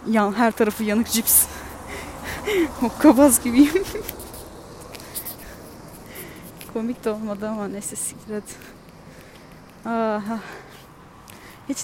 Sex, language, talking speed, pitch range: female, Turkish, 75 wpm, 210-265 Hz